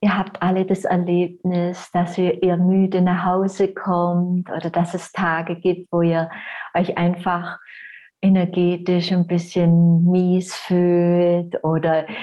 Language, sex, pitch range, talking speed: German, female, 175-200 Hz, 130 wpm